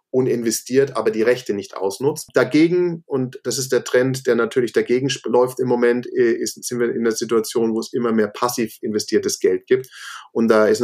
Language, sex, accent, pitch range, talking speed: German, male, German, 115-145 Hz, 190 wpm